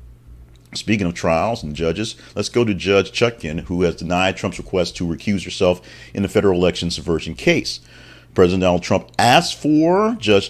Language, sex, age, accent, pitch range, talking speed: English, male, 40-59, American, 80-110 Hz, 170 wpm